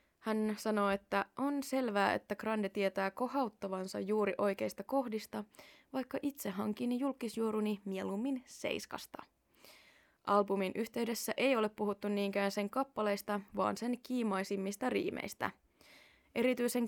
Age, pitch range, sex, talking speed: 20-39, 200-245 Hz, female, 110 wpm